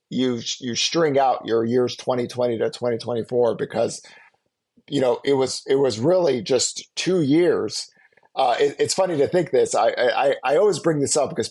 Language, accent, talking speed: English, American, 185 wpm